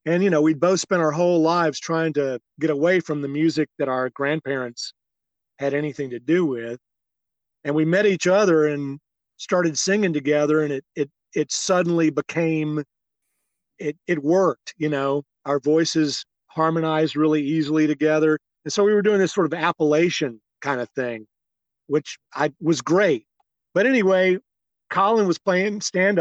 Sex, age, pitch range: male, 40-59, 140-170 Hz